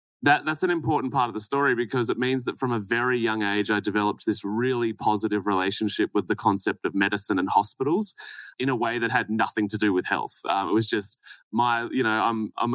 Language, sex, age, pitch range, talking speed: English, male, 20-39, 105-135 Hz, 230 wpm